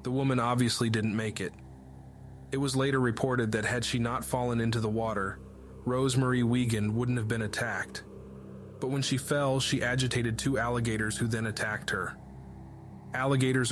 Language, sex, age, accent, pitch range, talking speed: English, male, 20-39, American, 95-125 Hz, 160 wpm